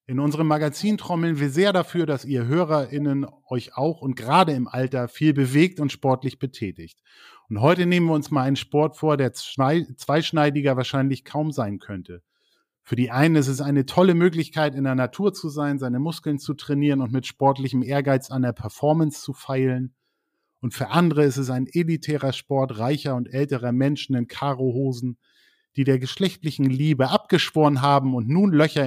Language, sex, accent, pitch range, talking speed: German, male, German, 125-155 Hz, 175 wpm